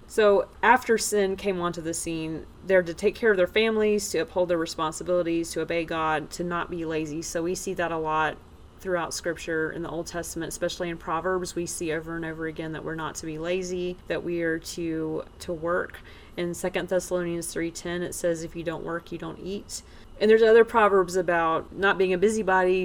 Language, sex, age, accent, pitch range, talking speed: English, female, 30-49, American, 160-185 Hz, 210 wpm